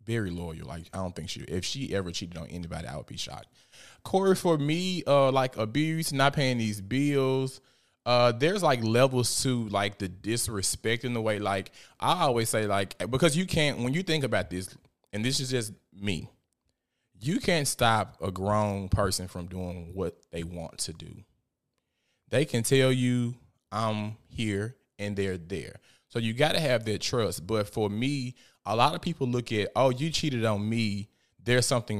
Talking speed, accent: 190 wpm, American